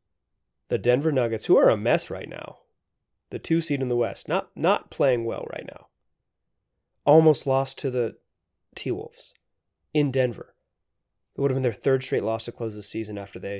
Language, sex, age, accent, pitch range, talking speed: English, male, 30-49, American, 105-150 Hz, 185 wpm